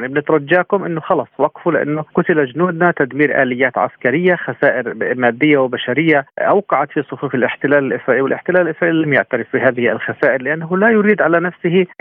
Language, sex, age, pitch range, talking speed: Arabic, male, 40-59, 140-170 Hz, 150 wpm